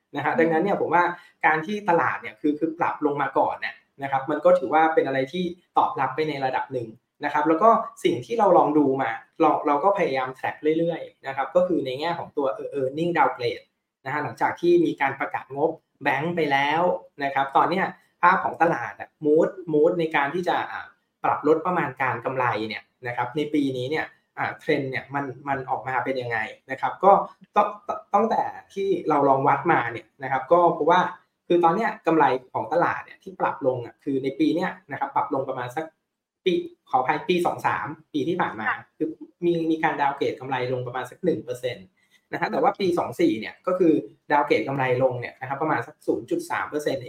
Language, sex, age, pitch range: Thai, male, 20-39, 135-180 Hz